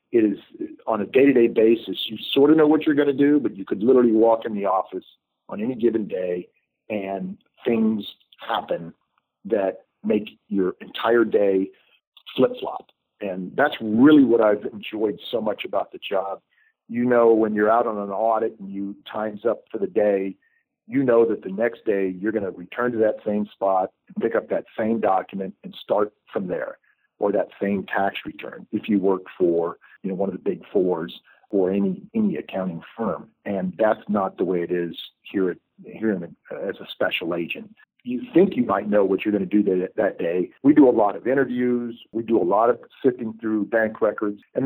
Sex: male